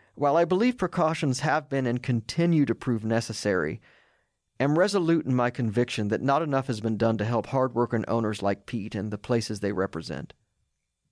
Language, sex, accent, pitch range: English, male, American, 105-140 Hz